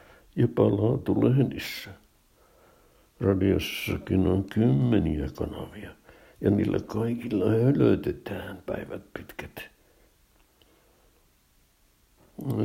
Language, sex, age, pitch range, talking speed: Finnish, male, 60-79, 80-100 Hz, 65 wpm